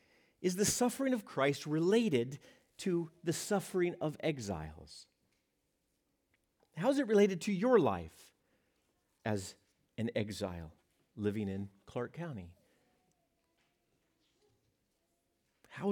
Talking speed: 100 wpm